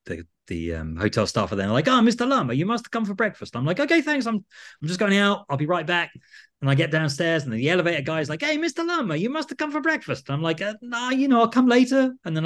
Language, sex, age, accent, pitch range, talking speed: English, male, 30-49, British, 130-220 Hz, 300 wpm